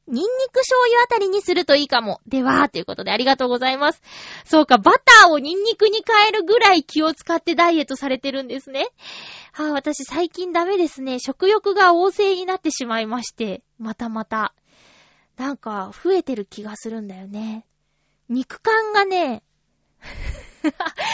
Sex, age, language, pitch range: female, 20-39, Japanese, 245-400 Hz